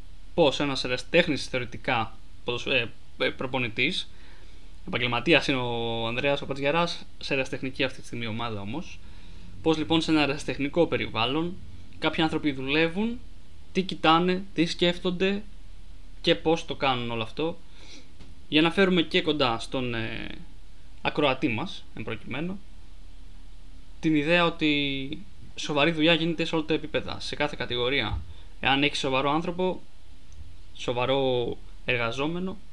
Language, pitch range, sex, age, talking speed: Greek, 105-150 Hz, male, 20-39, 120 wpm